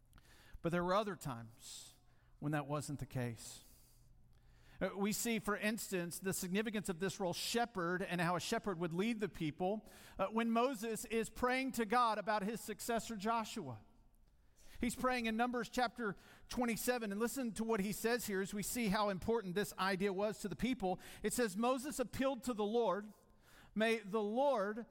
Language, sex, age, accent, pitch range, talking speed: English, male, 50-69, American, 175-235 Hz, 175 wpm